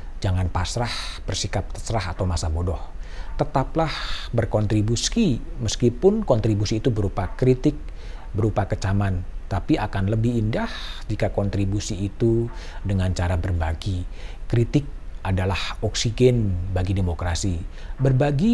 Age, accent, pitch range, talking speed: 50-69, native, 95-120 Hz, 105 wpm